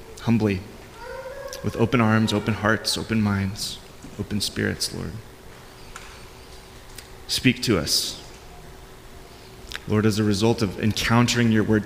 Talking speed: 110 wpm